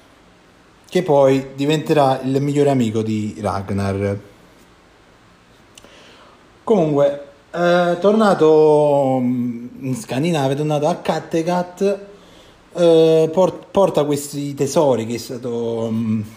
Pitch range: 125-160 Hz